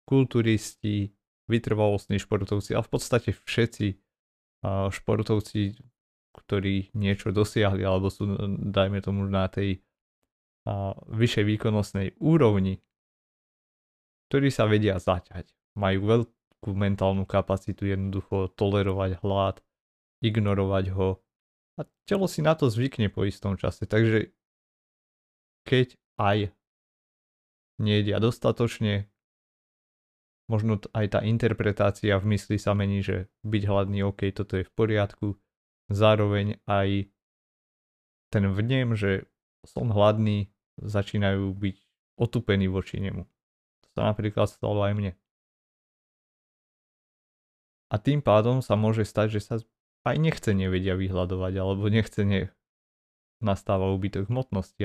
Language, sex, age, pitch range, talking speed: Slovak, male, 30-49, 95-110 Hz, 105 wpm